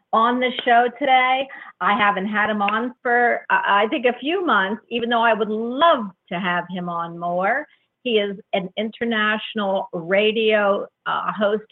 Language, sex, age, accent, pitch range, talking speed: English, female, 50-69, American, 195-250 Hz, 170 wpm